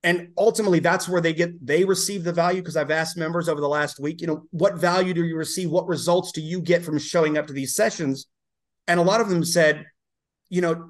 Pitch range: 155-185 Hz